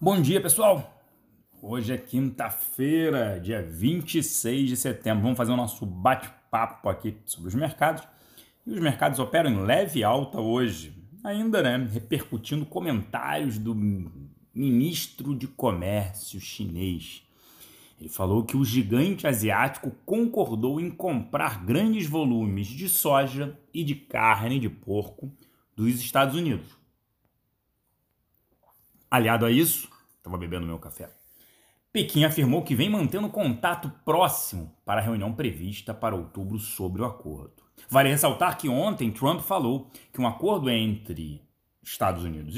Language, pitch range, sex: Portuguese, 110-145 Hz, male